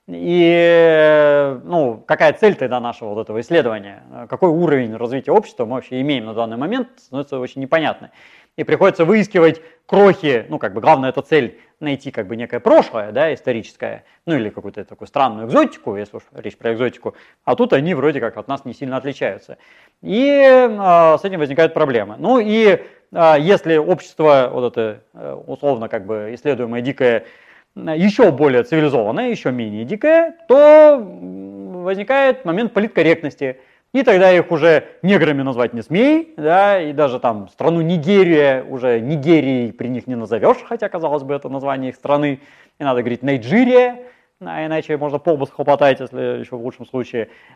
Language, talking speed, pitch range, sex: Russian, 165 wpm, 130-190 Hz, male